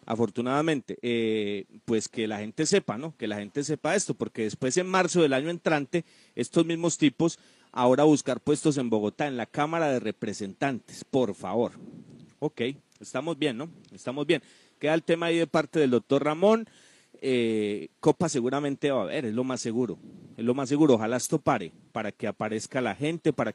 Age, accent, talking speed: 40-59, Colombian, 185 wpm